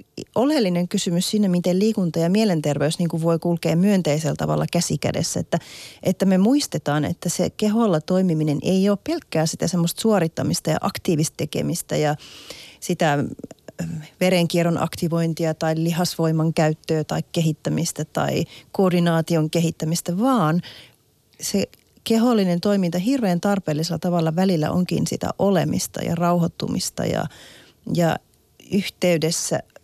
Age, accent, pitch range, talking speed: 30-49, native, 160-195 Hz, 115 wpm